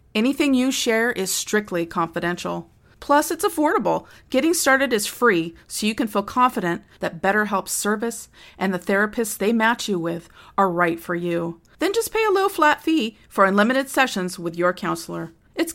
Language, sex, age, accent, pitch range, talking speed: English, female, 40-59, American, 180-240 Hz, 175 wpm